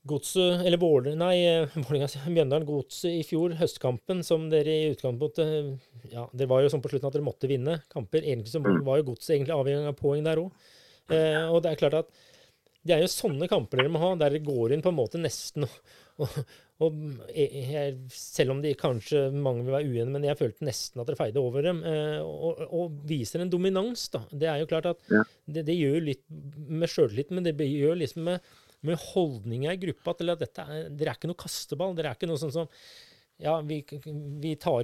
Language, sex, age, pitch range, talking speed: English, male, 30-49, 140-165 Hz, 215 wpm